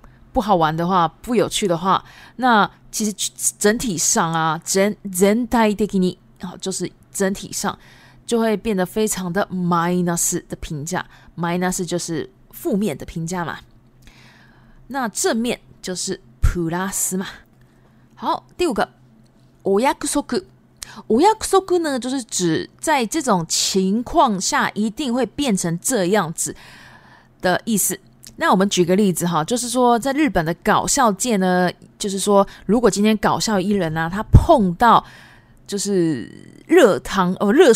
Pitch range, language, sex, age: 170-220 Hz, Japanese, female, 20-39